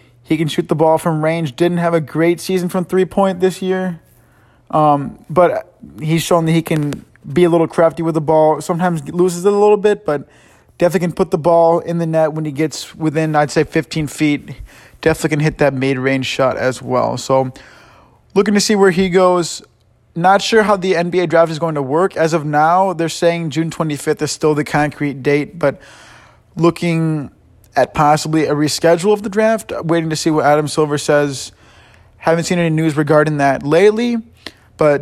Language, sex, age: English, male, 20-39